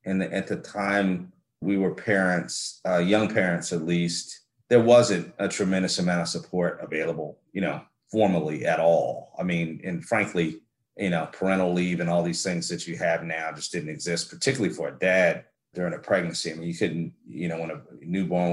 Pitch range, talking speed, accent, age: 85-100 Hz, 195 wpm, American, 30-49